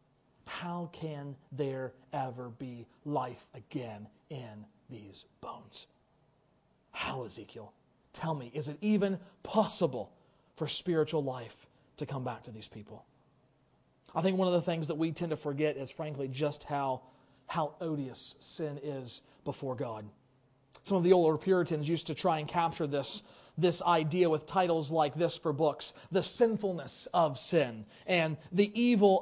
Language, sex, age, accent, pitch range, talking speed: English, male, 40-59, American, 145-230 Hz, 150 wpm